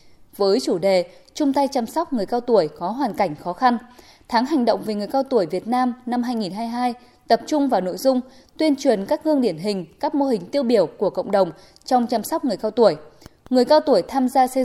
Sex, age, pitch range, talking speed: female, 10-29, 210-270 Hz, 235 wpm